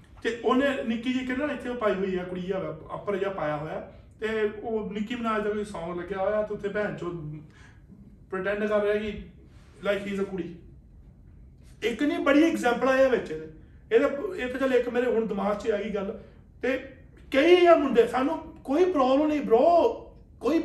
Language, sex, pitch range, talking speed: Punjabi, male, 210-300 Hz, 150 wpm